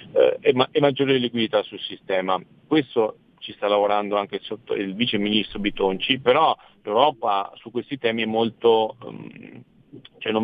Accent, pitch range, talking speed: native, 95-125 Hz, 160 wpm